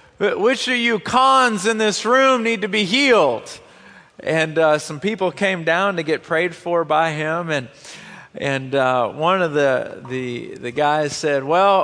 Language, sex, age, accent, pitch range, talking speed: English, male, 40-59, American, 170-260 Hz, 175 wpm